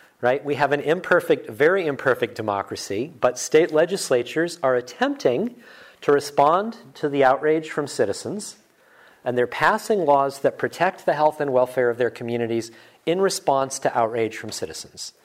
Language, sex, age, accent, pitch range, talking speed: English, male, 40-59, American, 120-150 Hz, 150 wpm